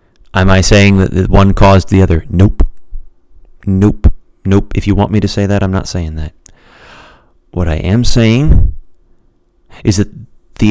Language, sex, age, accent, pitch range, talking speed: English, male, 30-49, American, 85-110 Hz, 165 wpm